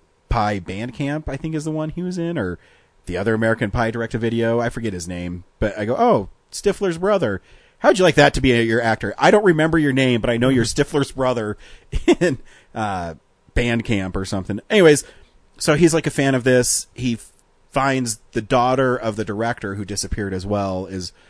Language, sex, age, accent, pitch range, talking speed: English, male, 30-49, American, 95-125 Hz, 210 wpm